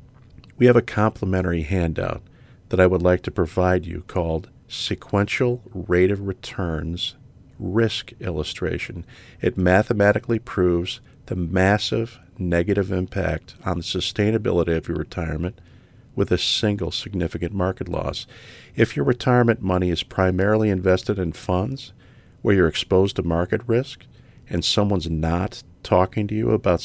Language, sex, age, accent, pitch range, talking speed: English, male, 50-69, American, 90-115 Hz, 135 wpm